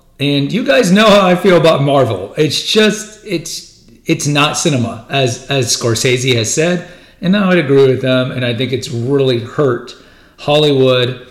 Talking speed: 175 wpm